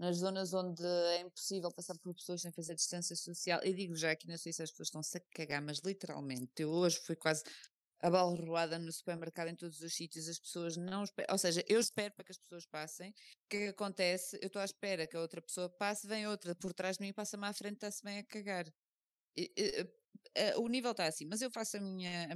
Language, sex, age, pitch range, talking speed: Portuguese, female, 20-39, 170-215 Hz, 240 wpm